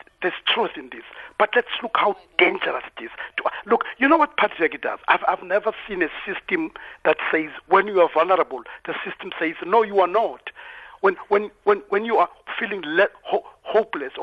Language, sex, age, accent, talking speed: English, male, 50-69, South African, 195 wpm